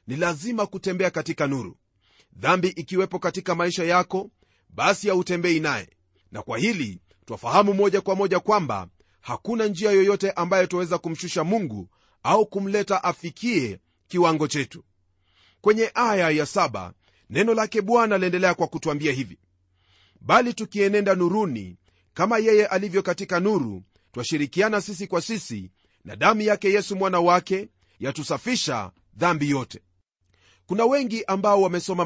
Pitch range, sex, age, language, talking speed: 120-195 Hz, male, 40-59, Swahili, 135 wpm